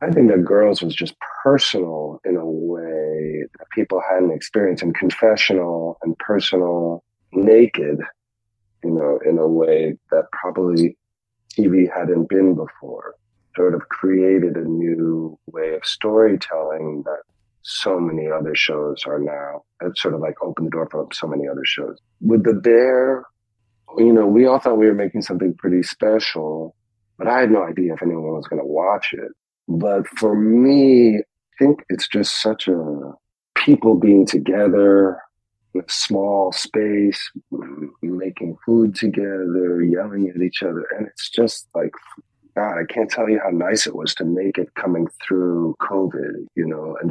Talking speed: 165 wpm